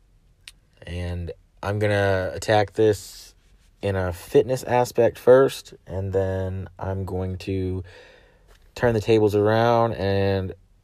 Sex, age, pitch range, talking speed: male, 30-49, 90-100 Hz, 115 wpm